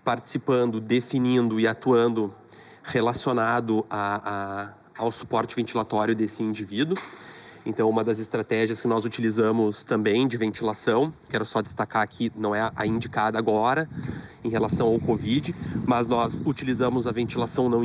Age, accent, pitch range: 30-49, Brazilian, 115-140 Hz